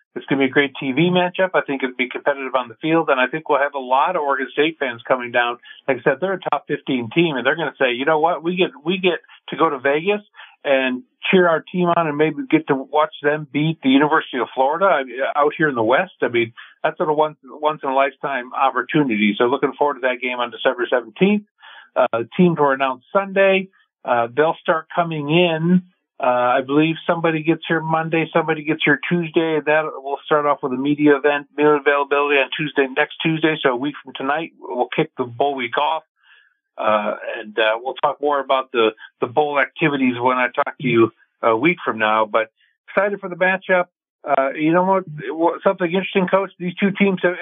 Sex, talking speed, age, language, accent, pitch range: male, 225 wpm, 50-69, English, American, 135-175 Hz